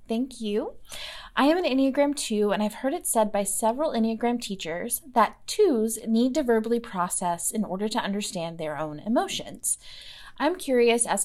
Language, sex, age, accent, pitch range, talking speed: English, female, 20-39, American, 205-275 Hz, 170 wpm